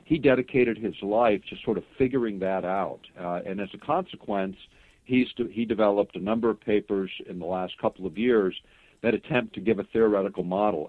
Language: English